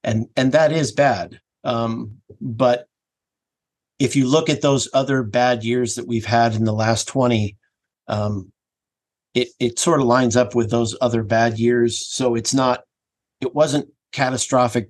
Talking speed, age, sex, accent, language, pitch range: 160 wpm, 50-69, male, American, English, 115-130 Hz